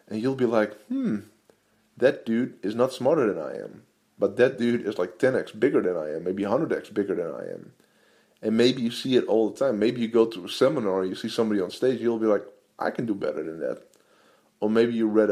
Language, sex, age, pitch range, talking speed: English, male, 20-39, 100-115 Hz, 240 wpm